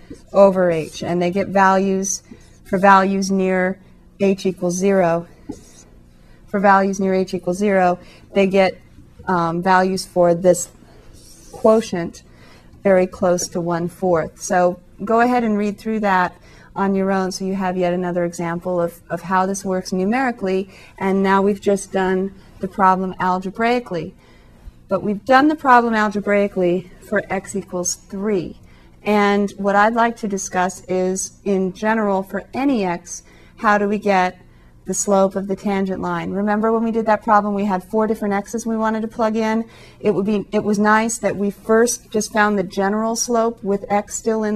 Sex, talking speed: female, 170 wpm